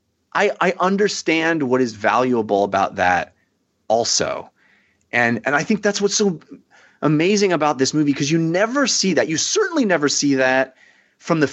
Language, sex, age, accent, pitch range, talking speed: English, male, 30-49, American, 130-180 Hz, 165 wpm